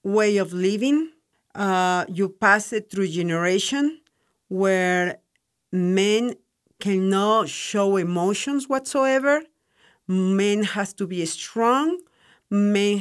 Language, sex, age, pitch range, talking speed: English, female, 50-69, 180-215 Hz, 95 wpm